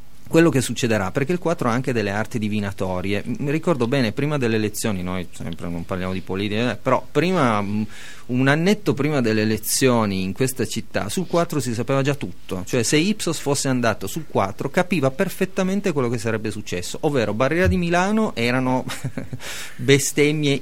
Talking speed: 170 wpm